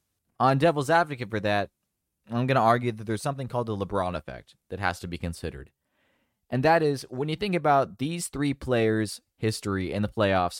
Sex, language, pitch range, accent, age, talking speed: male, English, 95-125 Hz, American, 20-39, 200 wpm